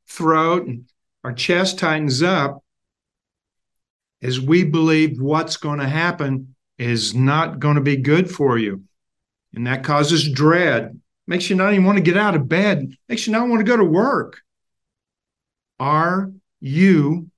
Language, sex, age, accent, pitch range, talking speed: English, male, 50-69, American, 150-195 Hz, 155 wpm